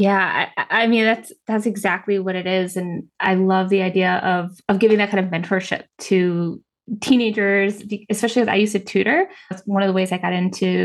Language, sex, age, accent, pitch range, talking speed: English, female, 10-29, American, 190-245 Hz, 210 wpm